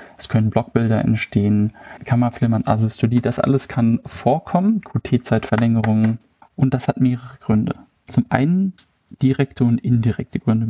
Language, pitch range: German, 115-140 Hz